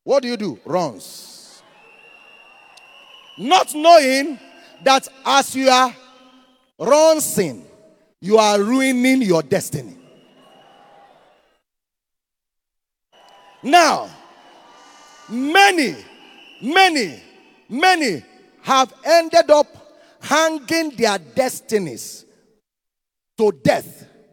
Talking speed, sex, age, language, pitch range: 70 wpm, male, 40-59, English, 255-335 Hz